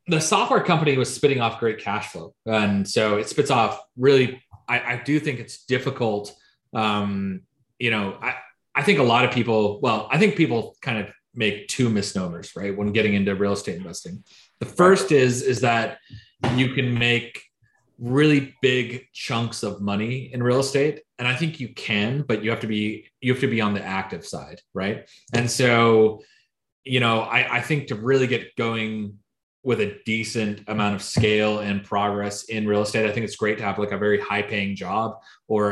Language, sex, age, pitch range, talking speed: English, male, 30-49, 100-125 Hz, 195 wpm